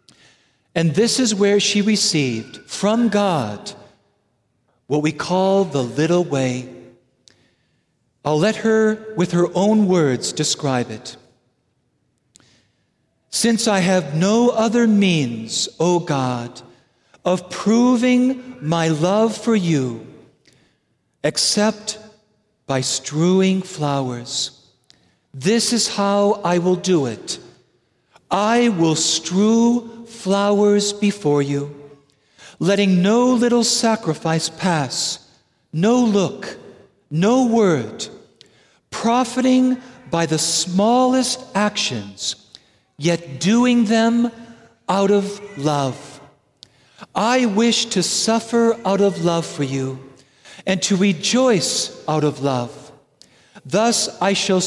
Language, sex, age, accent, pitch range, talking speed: English, male, 50-69, American, 145-220 Hz, 100 wpm